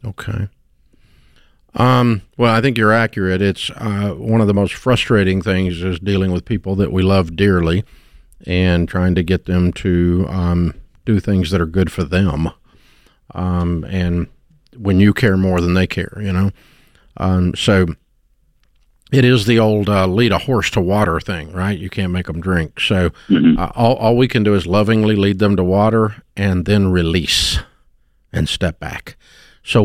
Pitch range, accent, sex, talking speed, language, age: 90-105 Hz, American, male, 175 wpm, English, 50-69